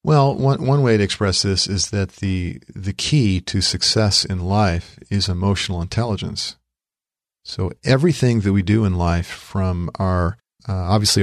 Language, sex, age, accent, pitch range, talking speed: English, male, 40-59, American, 95-110 Hz, 160 wpm